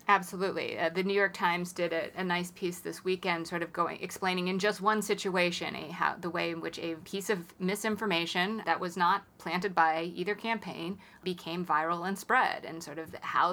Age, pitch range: 30-49, 175-205 Hz